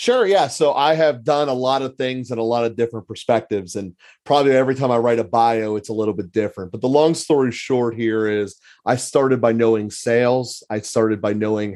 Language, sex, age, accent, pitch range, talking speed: English, male, 30-49, American, 105-125 Hz, 230 wpm